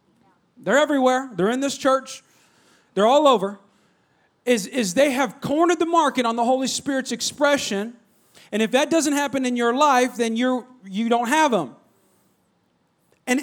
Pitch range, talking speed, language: 220-270 Hz, 160 wpm, English